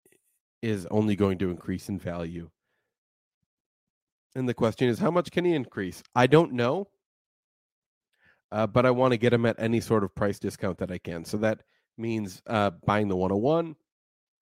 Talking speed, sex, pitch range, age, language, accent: 175 wpm, male, 95-125 Hz, 30-49, English, American